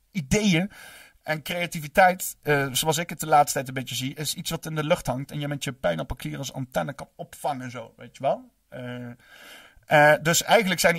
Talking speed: 220 wpm